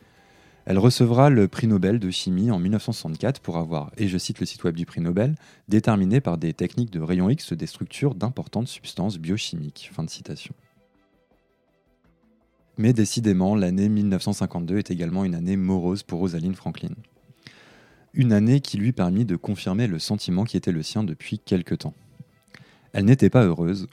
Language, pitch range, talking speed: French, 90-120 Hz, 165 wpm